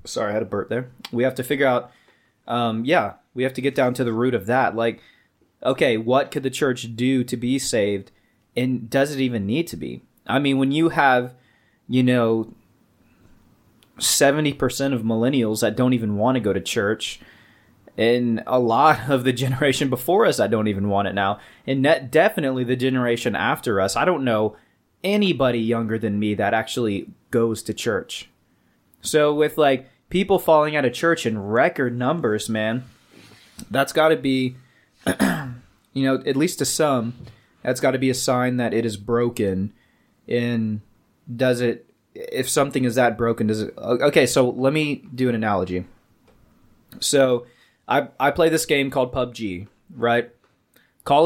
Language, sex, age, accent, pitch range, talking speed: English, male, 20-39, American, 115-135 Hz, 175 wpm